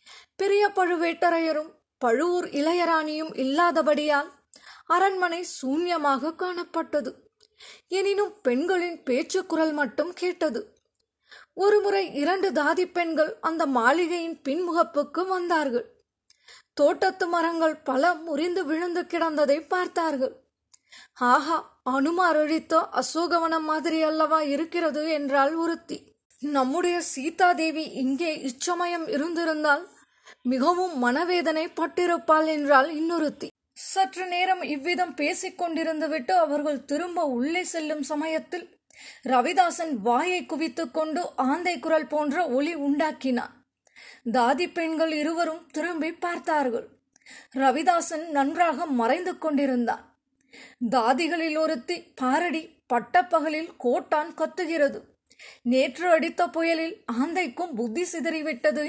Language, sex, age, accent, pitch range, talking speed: Tamil, female, 20-39, native, 295-350 Hz, 80 wpm